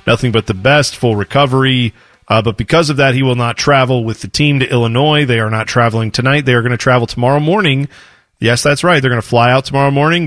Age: 40-59